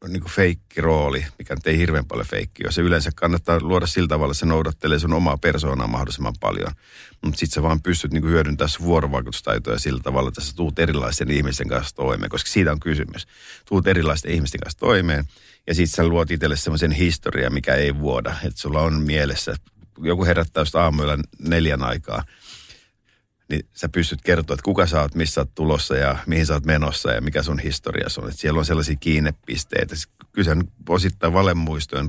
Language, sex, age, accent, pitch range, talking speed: Finnish, male, 50-69, native, 70-85 Hz, 185 wpm